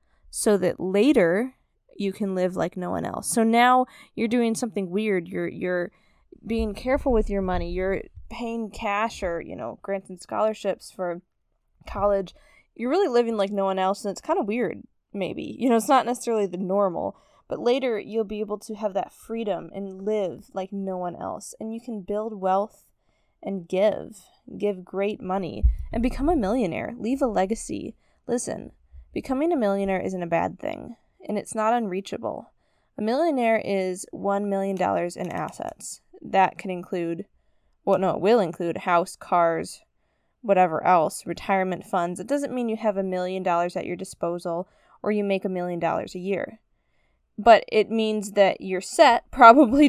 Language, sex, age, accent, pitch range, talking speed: English, female, 10-29, American, 185-230 Hz, 175 wpm